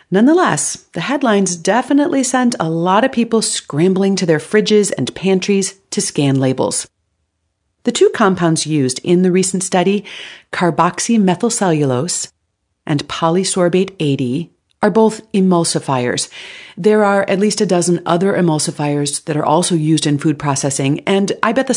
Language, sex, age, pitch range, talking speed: English, female, 40-59, 150-210 Hz, 140 wpm